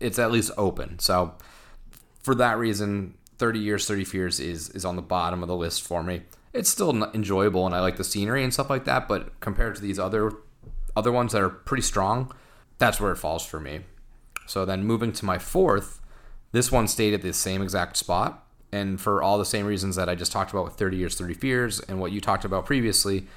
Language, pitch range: English, 90-110 Hz